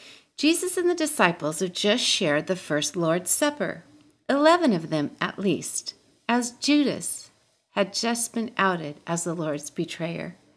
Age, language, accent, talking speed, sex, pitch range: 40-59, English, American, 150 wpm, female, 175-260 Hz